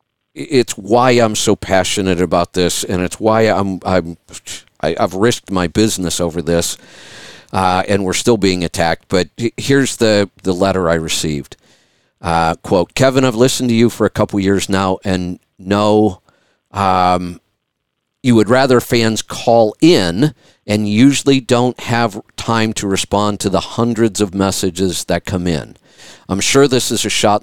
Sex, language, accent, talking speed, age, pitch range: male, English, American, 160 wpm, 50-69, 95-125 Hz